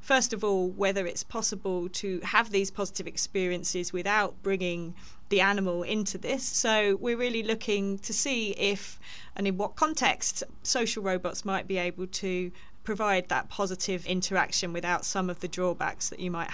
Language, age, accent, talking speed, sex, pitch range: English, 30-49, British, 165 wpm, female, 180-210 Hz